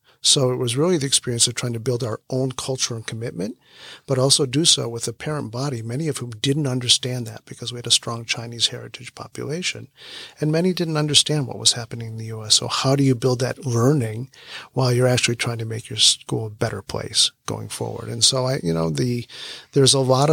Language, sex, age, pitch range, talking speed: English, male, 50-69, 115-130 Hz, 225 wpm